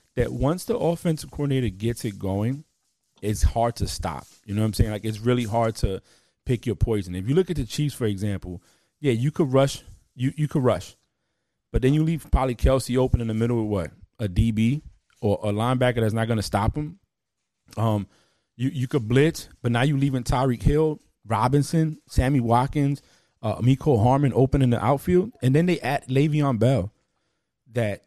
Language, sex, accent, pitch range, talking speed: English, male, American, 110-145 Hz, 195 wpm